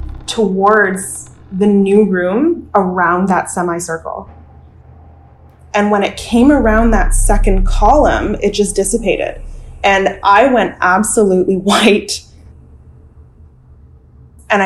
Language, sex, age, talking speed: English, female, 20-39, 100 wpm